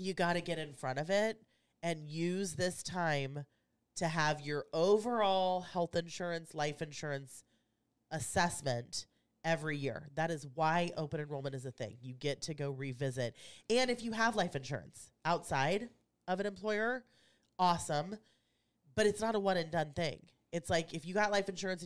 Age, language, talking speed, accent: 30-49, English, 170 wpm, American